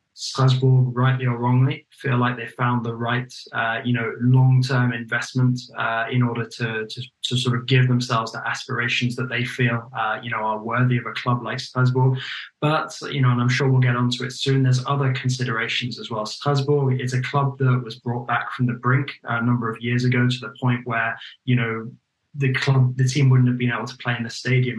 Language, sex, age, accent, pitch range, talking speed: English, male, 10-29, British, 115-130 Hz, 220 wpm